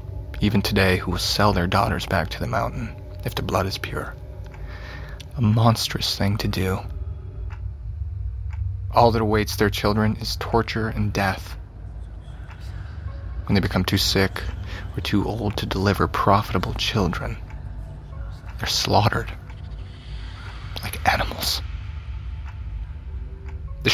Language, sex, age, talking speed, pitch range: English, male, 20-39, 120 wpm, 90-105 Hz